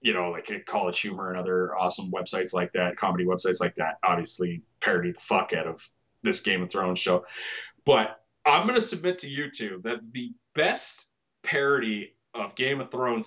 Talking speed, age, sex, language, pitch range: 185 wpm, 30-49, male, English, 105-140 Hz